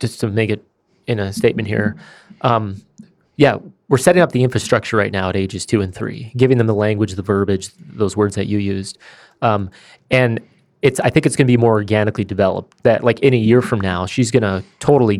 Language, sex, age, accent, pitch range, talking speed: English, male, 30-49, American, 100-120 Hz, 220 wpm